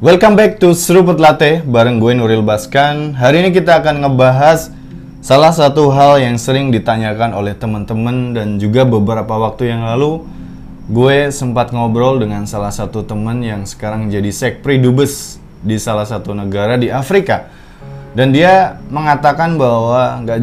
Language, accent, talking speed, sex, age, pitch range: Indonesian, native, 145 wpm, male, 20-39, 110-140 Hz